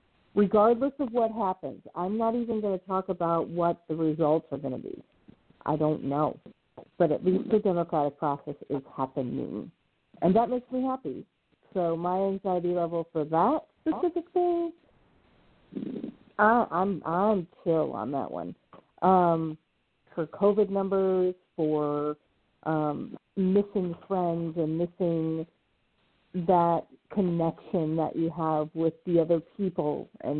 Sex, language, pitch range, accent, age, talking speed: female, English, 155-190 Hz, American, 50-69, 135 wpm